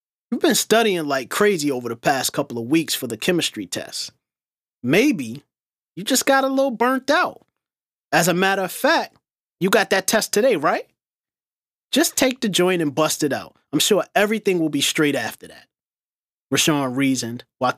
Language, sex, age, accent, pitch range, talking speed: English, male, 30-49, American, 130-170 Hz, 180 wpm